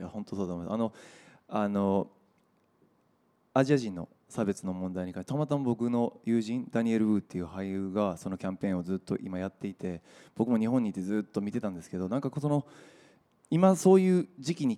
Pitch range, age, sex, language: 95-130 Hz, 20-39, male, Japanese